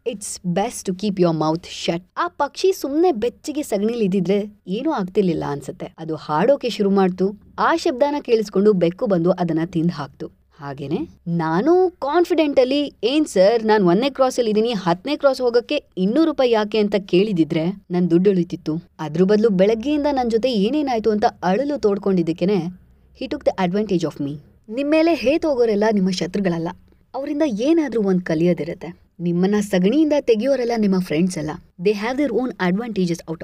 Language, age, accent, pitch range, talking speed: Kannada, 20-39, native, 175-245 Hz, 150 wpm